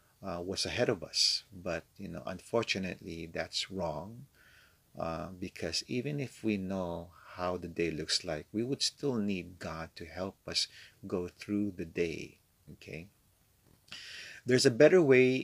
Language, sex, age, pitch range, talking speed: English, male, 50-69, 85-110 Hz, 150 wpm